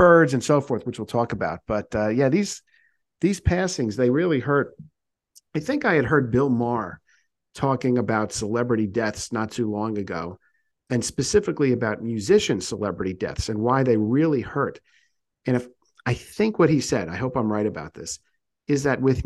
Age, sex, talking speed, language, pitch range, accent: 50-69, male, 185 wpm, English, 115-150 Hz, American